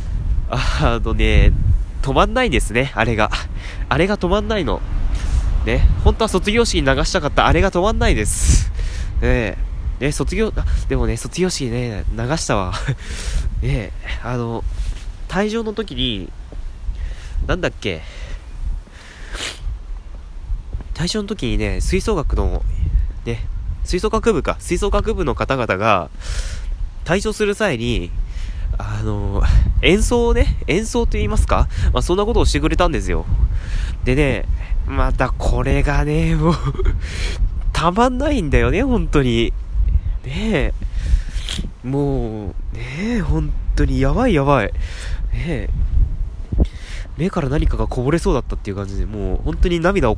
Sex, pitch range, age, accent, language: male, 80-130 Hz, 20-39, native, Japanese